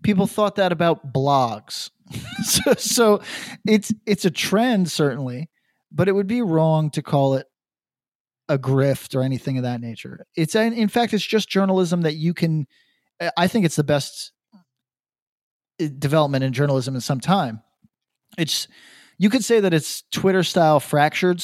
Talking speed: 160 wpm